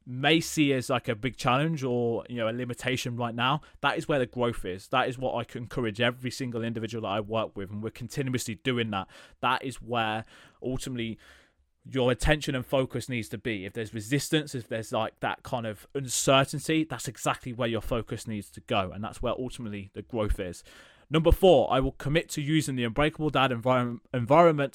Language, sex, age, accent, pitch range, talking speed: English, male, 20-39, British, 110-130 Hz, 205 wpm